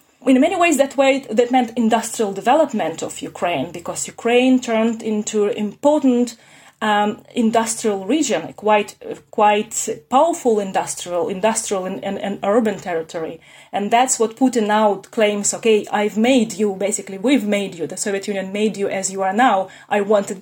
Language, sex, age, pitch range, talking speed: English, female, 30-49, 200-245 Hz, 160 wpm